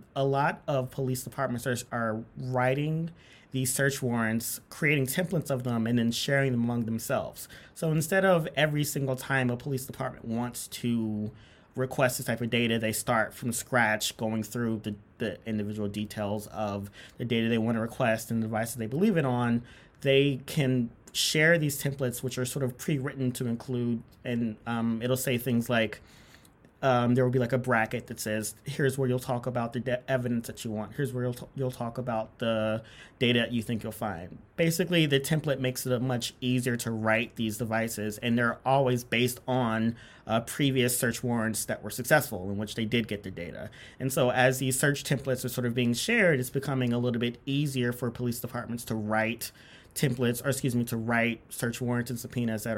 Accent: American